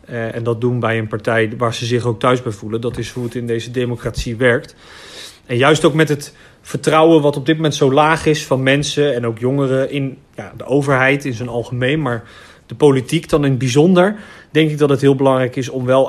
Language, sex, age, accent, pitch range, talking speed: Dutch, male, 30-49, Dutch, 125-150 Hz, 230 wpm